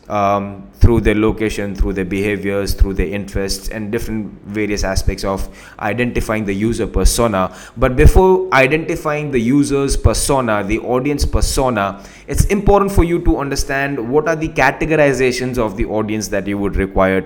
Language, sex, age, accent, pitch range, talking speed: English, male, 20-39, Indian, 105-150 Hz, 155 wpm